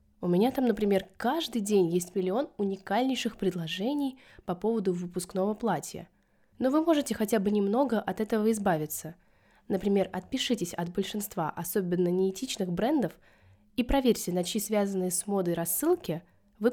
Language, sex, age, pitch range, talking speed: Russian, female, 20-39, 180-230 Hz, 140 wpm